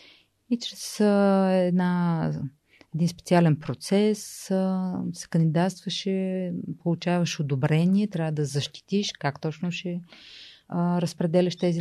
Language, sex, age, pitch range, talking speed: Bulgarian, female, 30-49, 150-180 Hz, 90 wpm